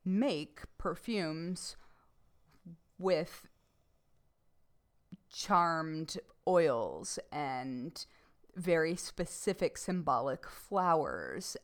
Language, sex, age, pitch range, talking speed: English, female, 20-39, 165-215 Hz, 50 wpm